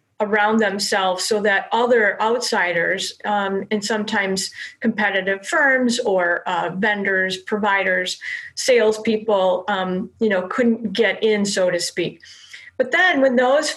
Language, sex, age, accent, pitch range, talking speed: English, female, 40-59, American, 215-255 Hz, 120 wpm